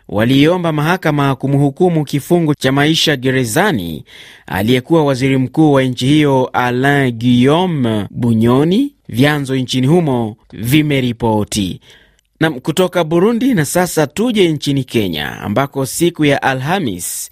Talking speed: 110 wpm